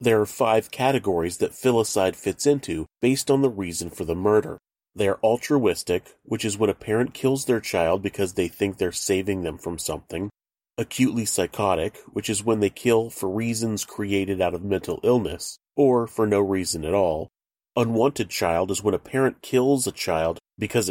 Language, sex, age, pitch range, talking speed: English, male, 30-49, 95-120 Hz, 185 wpm